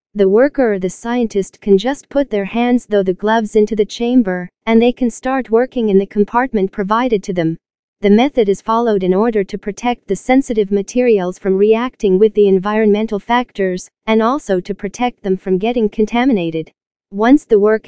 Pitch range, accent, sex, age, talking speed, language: 200-235 Hz, American, female, 40-59, 185 wpm, English